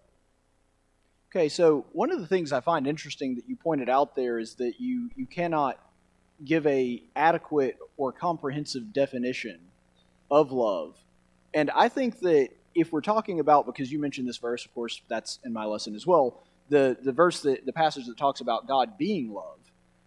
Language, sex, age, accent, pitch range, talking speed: English, male, 30-49, American, 125-175 Hz, 180 wpm